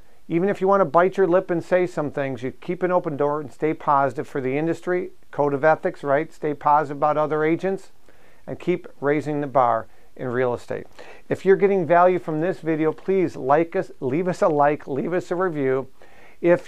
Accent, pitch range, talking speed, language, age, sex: American, 145-180 Hz, 210 wpm, English, 50-69, male